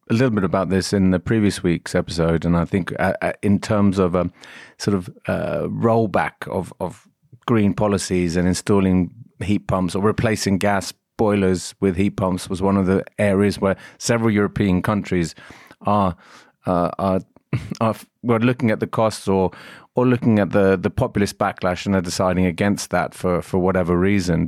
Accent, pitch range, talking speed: British, 90-105 Hz, 175 wpm